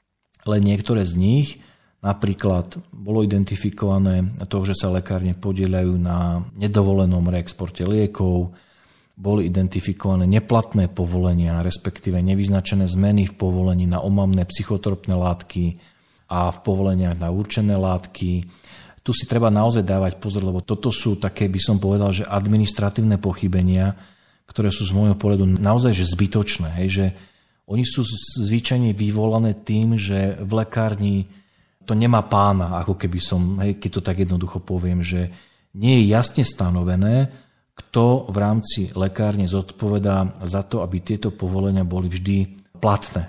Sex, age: male, 40-59